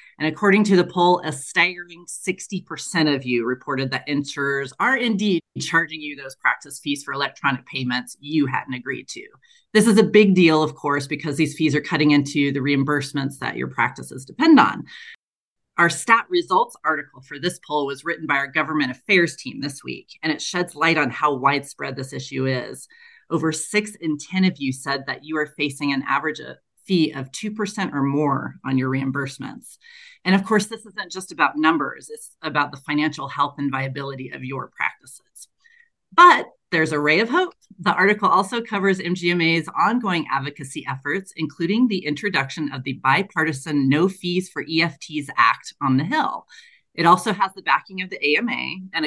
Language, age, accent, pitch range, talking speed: English, 30-49, American, 140-190 Hz, 185 wpm